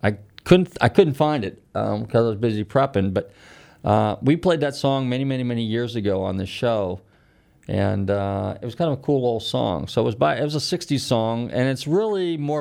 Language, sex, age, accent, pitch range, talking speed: English, male, 40-59, American, 100-135 Hz, 230 wpm